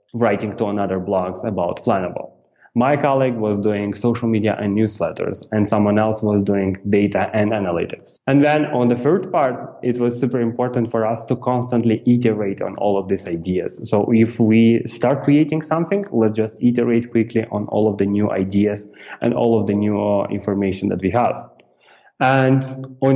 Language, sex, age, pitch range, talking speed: English, male, 20-39, 105-130 Hz, 180 wpm